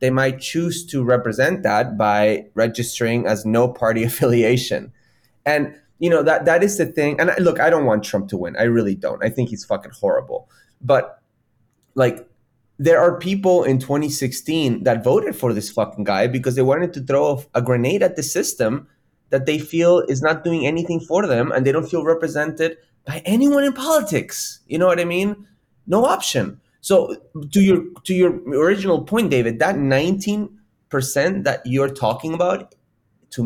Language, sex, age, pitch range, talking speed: English, male, 30-49, 120-170 Hz, 180 wpm